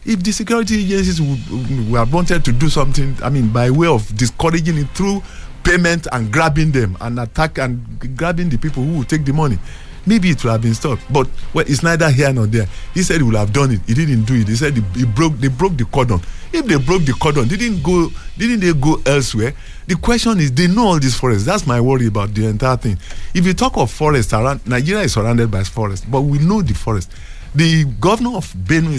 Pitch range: 110-165 Hz